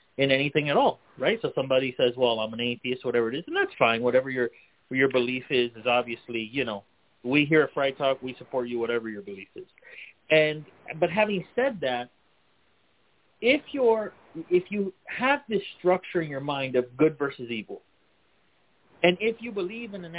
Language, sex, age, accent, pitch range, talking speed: English, male, 30-49, American, 125-180 Hz, 190 wpm